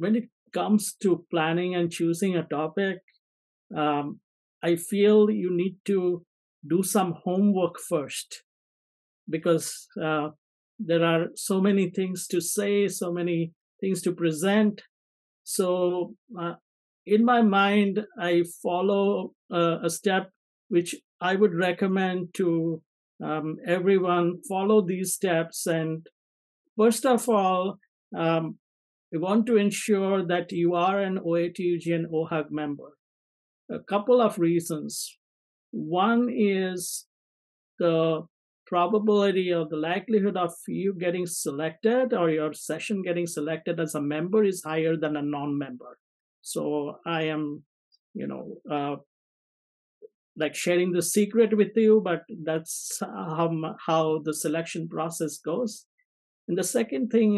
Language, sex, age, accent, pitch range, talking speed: English, male, 50-69, Indian, 160-195 Hz, 125 wpm